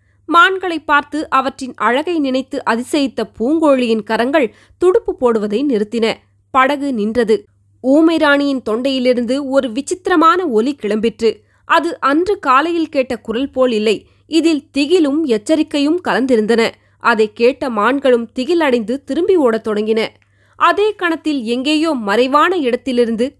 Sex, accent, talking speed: female, native, 110 wpm